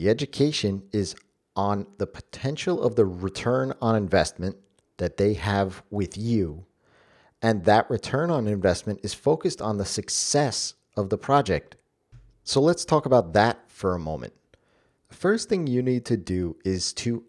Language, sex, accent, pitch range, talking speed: English, male, American, 95-130 Hz, 160 wpm